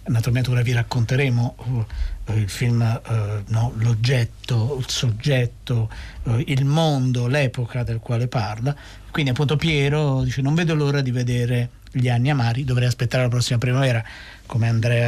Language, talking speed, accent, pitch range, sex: Italian, 135 wpm, native, 110-130 Hz, male